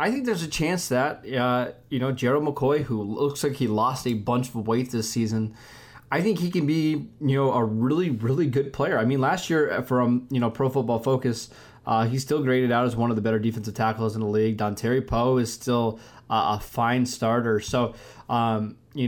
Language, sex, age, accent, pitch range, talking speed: English, male, 20-39, American, 115-140 Hz, 225 wpm